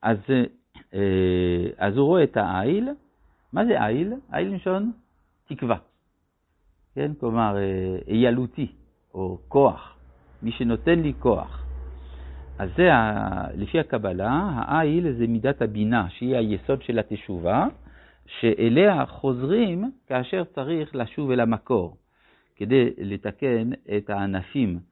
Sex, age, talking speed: male, 60-79, 105 wpm